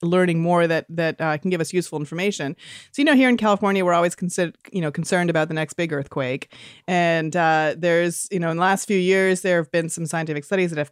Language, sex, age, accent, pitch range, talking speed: English, female, 30-49, American, 160-220 Hz, 245 wpm